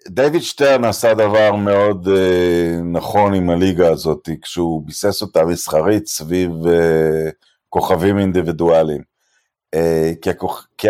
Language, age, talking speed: Hebrew, 50-69, 105 wpm